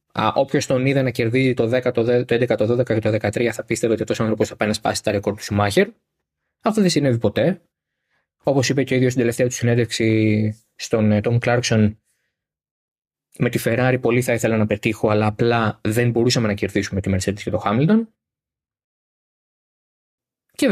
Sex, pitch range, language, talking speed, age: male, 105-140 Hz, Greek, 185 wpm, 20-39